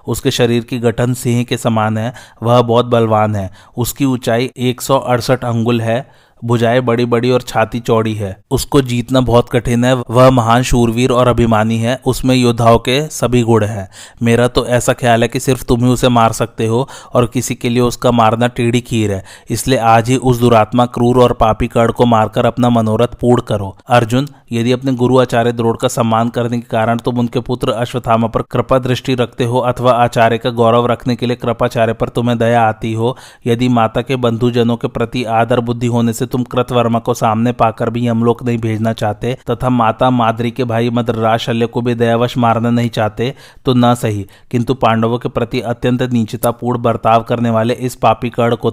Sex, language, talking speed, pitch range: male, Hindi, 195 wpm, 115-125 Hz